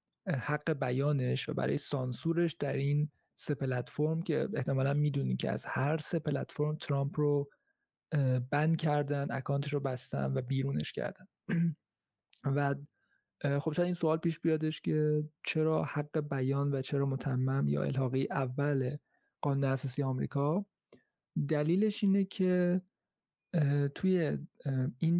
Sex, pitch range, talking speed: male, 135-160 Hz, 125 wpm